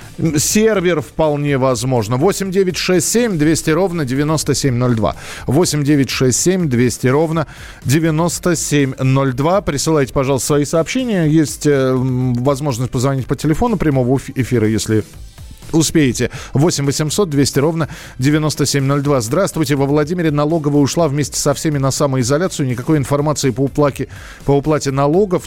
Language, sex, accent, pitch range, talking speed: Russian, male, native, 125-160 Hz, 120 wpm